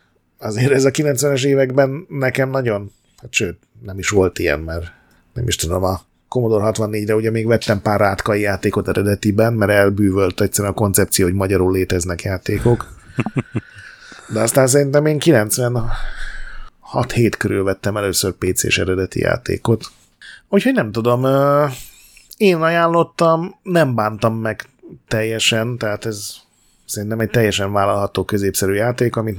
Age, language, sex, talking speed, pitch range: 30-49, Hungarian, male, 135 wpm, 100-120 Hz